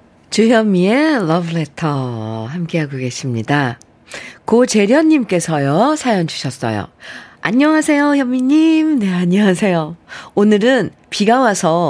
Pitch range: 150-220 Hz